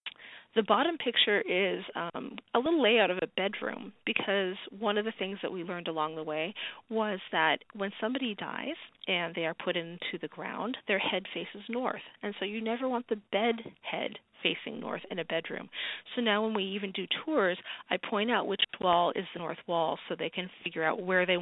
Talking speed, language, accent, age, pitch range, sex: 205 wpm, English, American, 40-59, 175-220 Hz, female